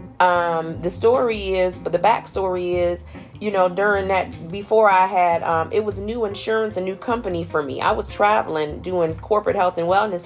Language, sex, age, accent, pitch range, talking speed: English, female, 40-59, American, 155-185 Hz, 195 wpm